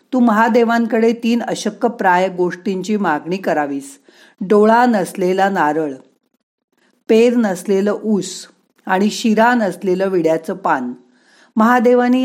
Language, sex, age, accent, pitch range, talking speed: Marathi, female, 50-69, native, 180-235 Hz, 100 wpm